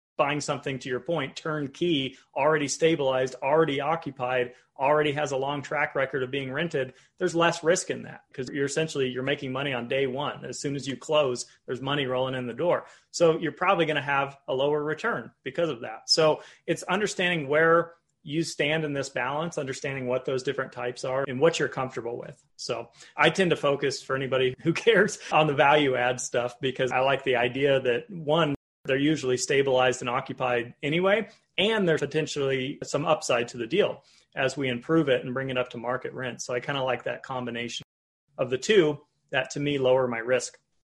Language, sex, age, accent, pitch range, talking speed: English, male, 30-49, American, 130-160 Hz, 200 wpm